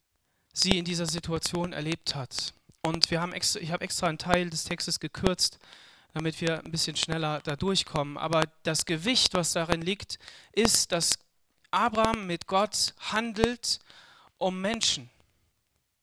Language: German